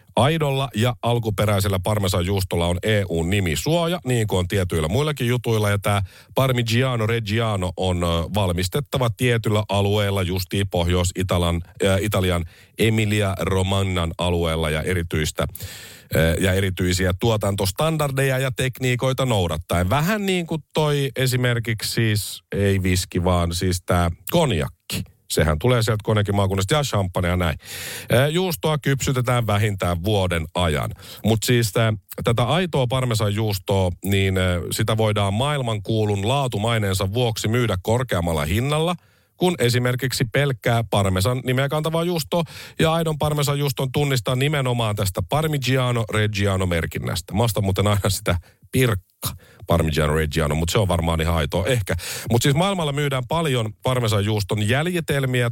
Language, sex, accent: Finnish, male, native